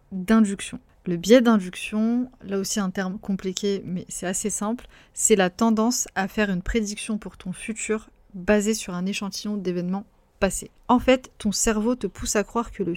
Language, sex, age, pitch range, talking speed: French, female, 30-49, 190-225 Hz, 180 wpm